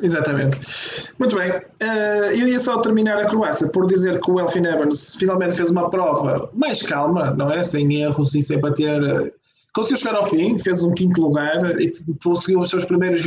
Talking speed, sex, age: 190 wpm, male, 20-39